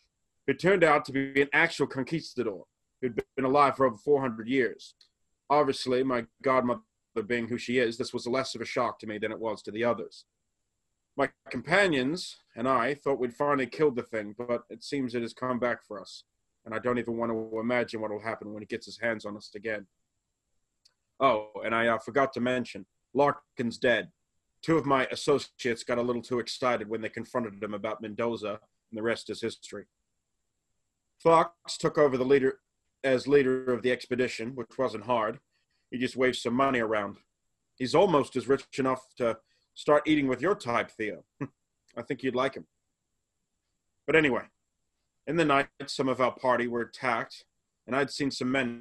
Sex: male